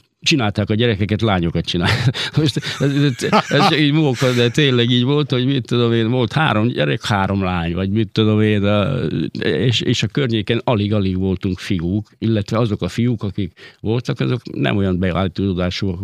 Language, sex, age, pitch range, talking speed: Hungarian, male, 50-69, 90-115 Hz, 160 wpm